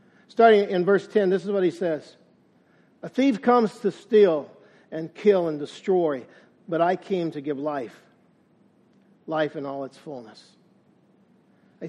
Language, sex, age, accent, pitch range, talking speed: English, male, 50-69, American, 175-220 Hz, 150 wpm